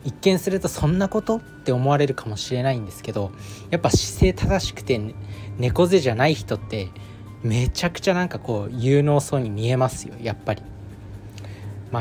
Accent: native